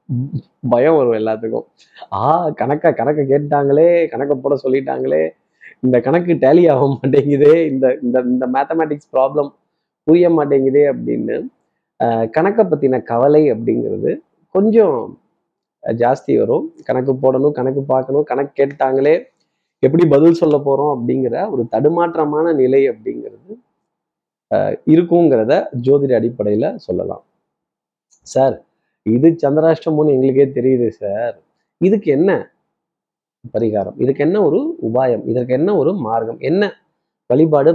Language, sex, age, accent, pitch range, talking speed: Tamil, male, 20-39, native, 130-165 Hz, 110 wpm